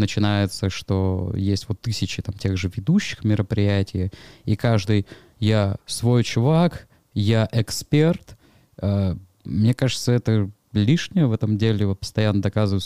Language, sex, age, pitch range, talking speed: Russian, male, 20-39, 105-140 Hz, 125 wpm